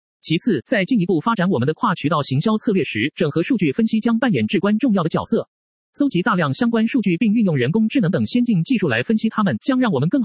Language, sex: Chinese, male